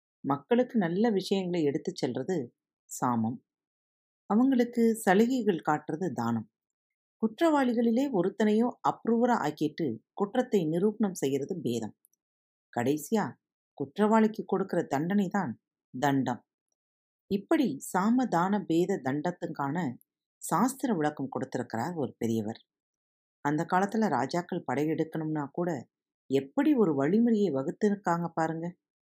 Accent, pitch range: native, 135-215 Hz